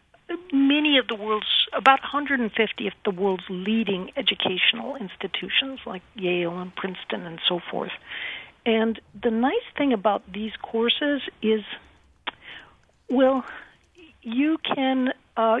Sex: female